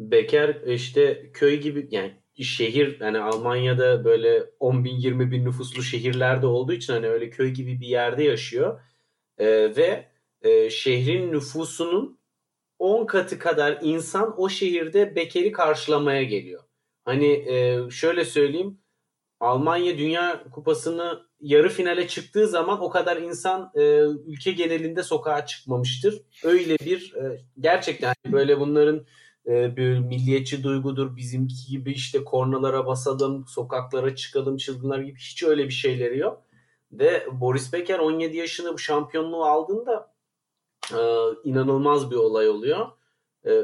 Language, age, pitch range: Turkish, 40-59, 130-175 Hz